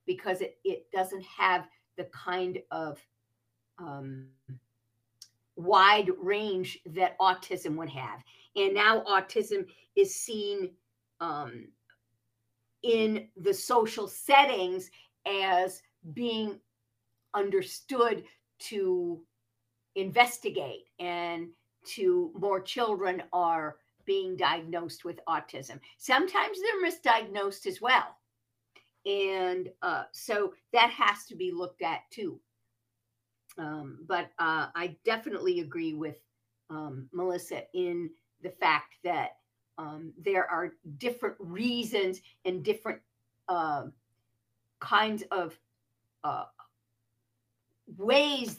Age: 50-69